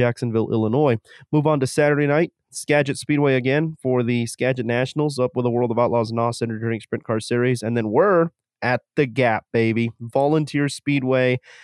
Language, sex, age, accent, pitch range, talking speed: English, male, 30-49, American, 115-135 Hz, 175 wpm